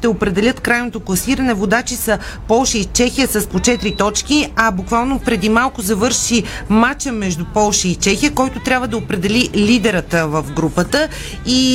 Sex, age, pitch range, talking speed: female, 30-49, 205-245 Hz, 160 wpm